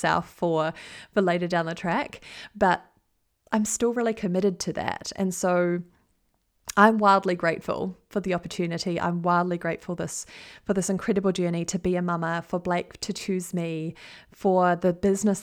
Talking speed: 165 wpm